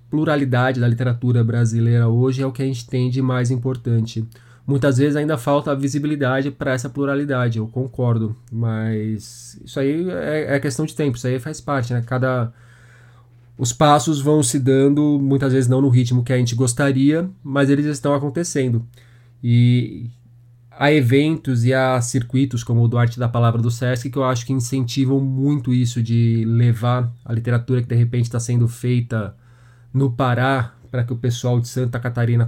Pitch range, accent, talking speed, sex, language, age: 120-135 Hz, Brazilian, 175 wpm, male, Portuguese, 20-39